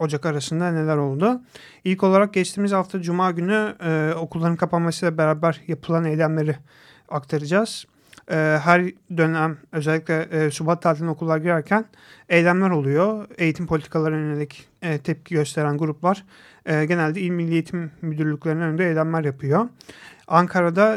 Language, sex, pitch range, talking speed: Turkish, male, 155-175 Hz, 130 wpm